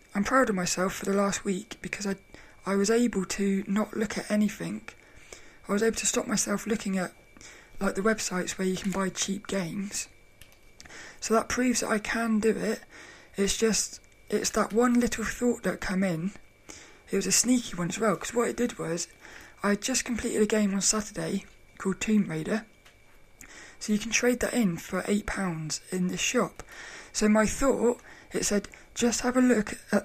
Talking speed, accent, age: 195 wpm, British, 20-39